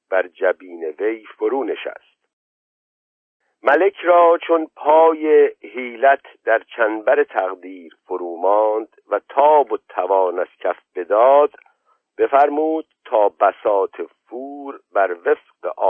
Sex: male